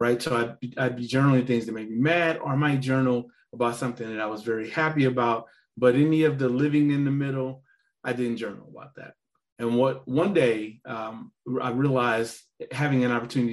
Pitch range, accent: 115-135 Hz, American